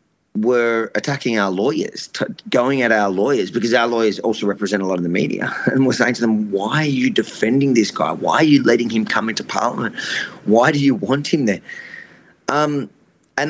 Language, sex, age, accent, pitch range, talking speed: English, male, 30-49, Australian, 110-135 Hz, 200 wpm